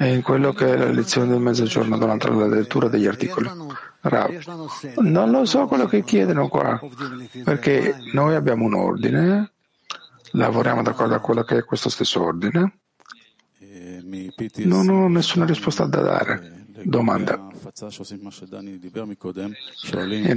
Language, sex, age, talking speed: Italian, male, 50-69, 125 wpm